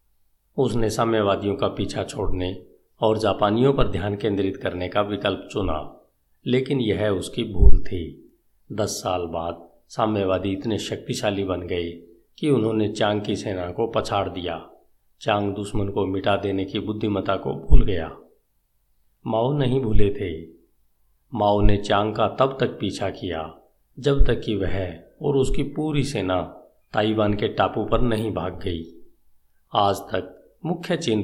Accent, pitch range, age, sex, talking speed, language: native, 90-115 Hz, 50-69, male, 145 wpm, Hindi